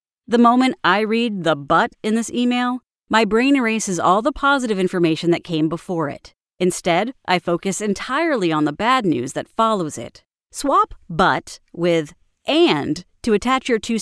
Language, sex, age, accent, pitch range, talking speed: English, female, 40-59, American, 170-235 Hz, 165 wpm